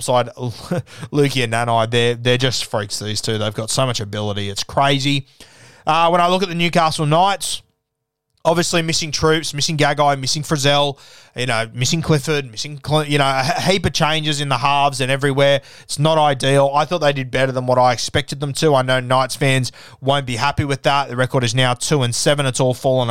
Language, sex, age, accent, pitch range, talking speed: English, male, 20-39, Australian, 120-145 Hz, 210 wpm